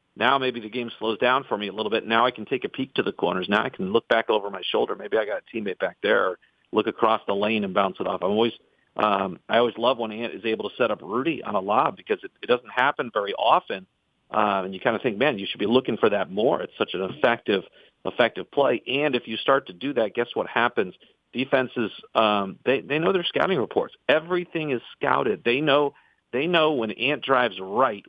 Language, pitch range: English, 105-130 Hz